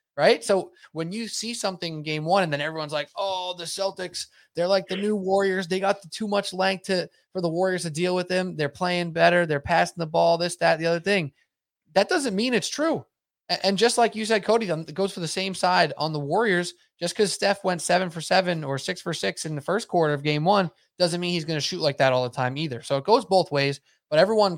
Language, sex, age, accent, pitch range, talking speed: English, male, 20-39, American, 135-180 Hz, 250 wpm